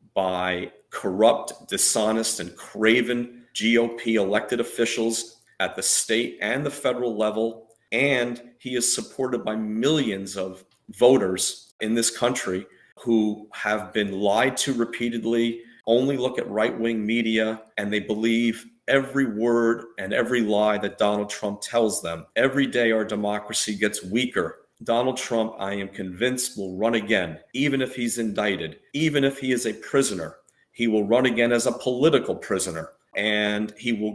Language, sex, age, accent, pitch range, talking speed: English, male, 40-59, American, 105-120 Hz, 150 wpm